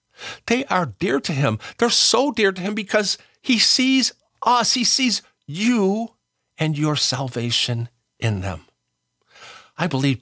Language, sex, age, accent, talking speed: English, male, 50-69, American, 140 wpm